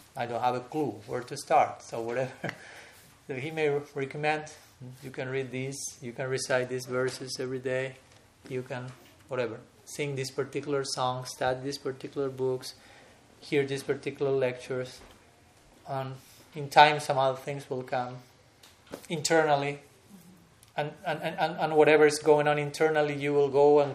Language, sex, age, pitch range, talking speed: English, male, 30-49, 125-145 Hz, 160 wpm